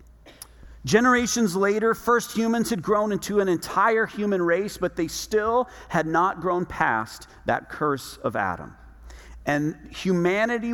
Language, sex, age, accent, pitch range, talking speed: English, male, 40-59, American, 125-190 Hz, 135 wpm